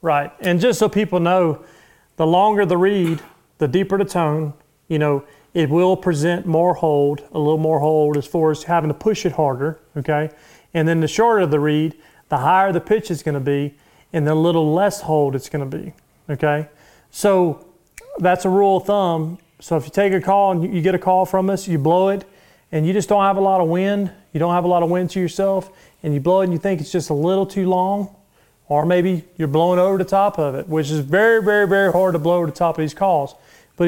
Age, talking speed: 40-59, 240 wpm